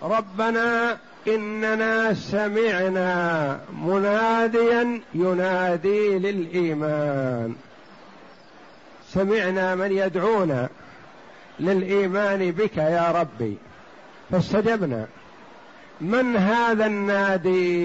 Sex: male